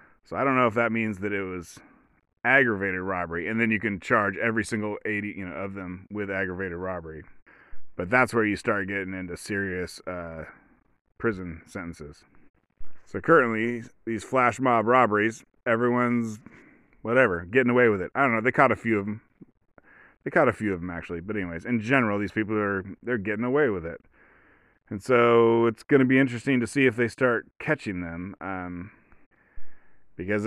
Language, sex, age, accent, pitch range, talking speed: English, male, 30-49, American, 95-120 Hz, 185 wpm